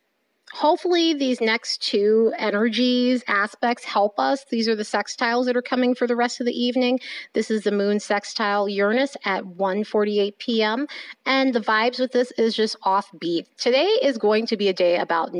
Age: 30-49